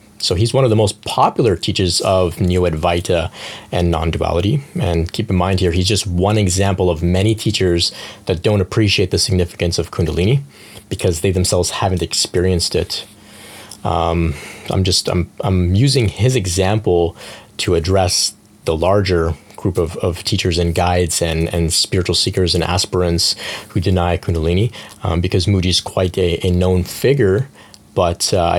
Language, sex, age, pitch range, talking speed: English, male, 30-49, 90-110 Hz, 160 wpm